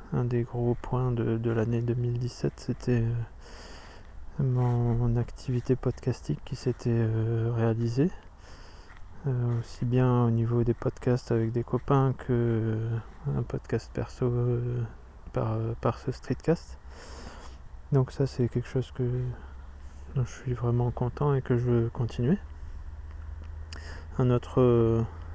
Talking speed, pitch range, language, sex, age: 135 wpm, 110-125 Hz, French, male, 20-39